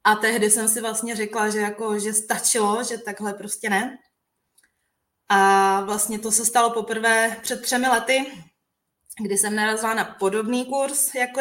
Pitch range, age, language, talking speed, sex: 210-245 Hz, 20-39, Czech, 160 wpm, female